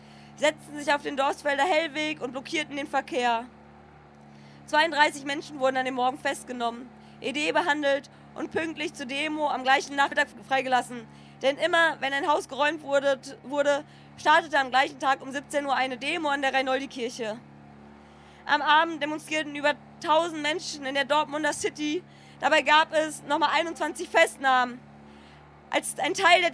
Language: German